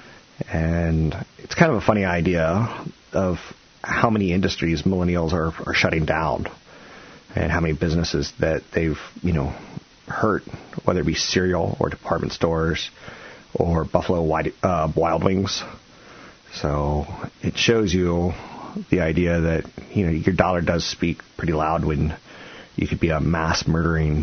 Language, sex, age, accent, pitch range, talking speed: English, male, 30-49, American, 80-90 Hz, 145 wpm